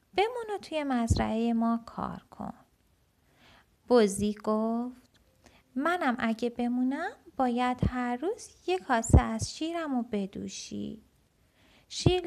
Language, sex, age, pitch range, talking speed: Persian, female, 20-39, 200-280 Hz, 105 wpm